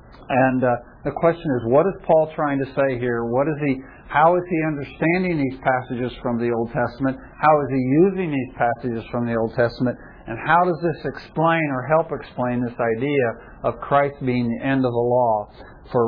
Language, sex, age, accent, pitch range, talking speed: English, male, 60-79, American, 125-165 Hz, 200 wpm